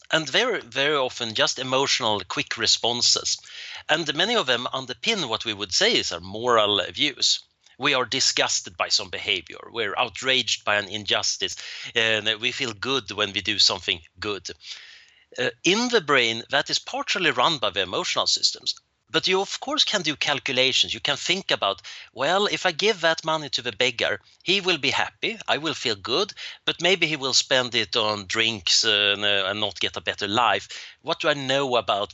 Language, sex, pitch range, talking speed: English, male, 110-165 Hz, 195 wpm